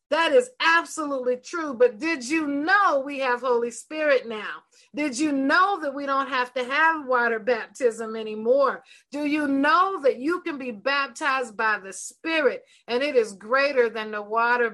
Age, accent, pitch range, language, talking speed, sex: 40-59, American, 215-280 Hz, English, 175 wpm, female